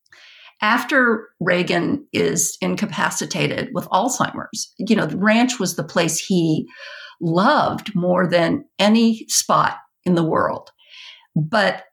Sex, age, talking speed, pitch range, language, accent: female, 50-69, 115 wpm, 170-225 Hz, English, American